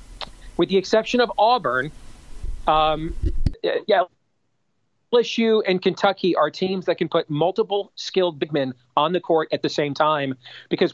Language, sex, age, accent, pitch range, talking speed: English, male, 40-59, American, 150-185 Hz, 150 wpm